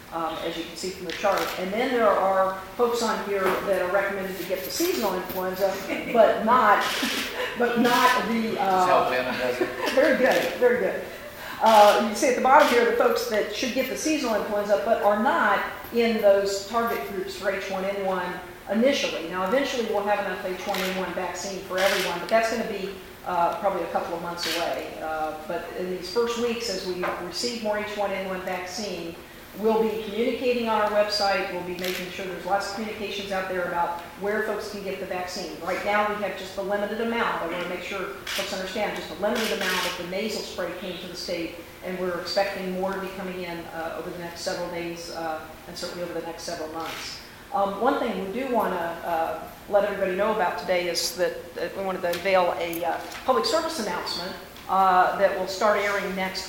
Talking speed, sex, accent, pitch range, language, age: 205 wpm, female, American, 180-210 Hz, English, 50-69